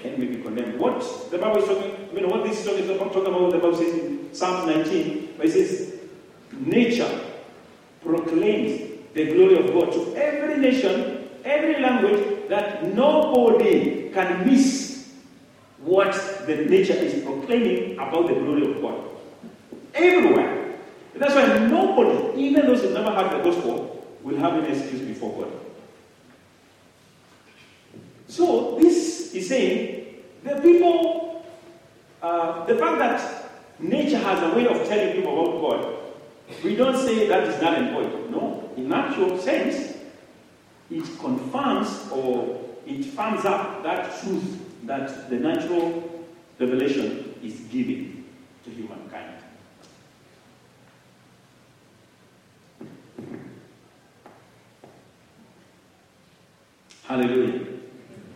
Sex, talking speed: male, 120 wpm